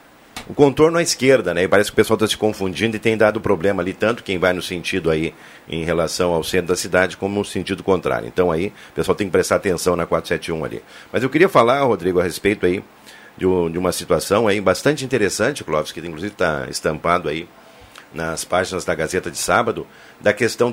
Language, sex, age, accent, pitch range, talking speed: Portuguese, male, 50-69, Brazilian, 90-115 Hz, 210 wpm